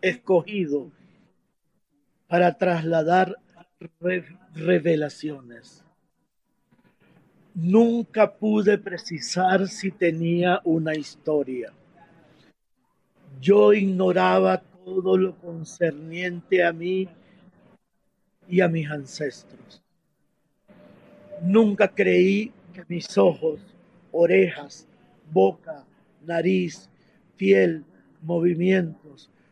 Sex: male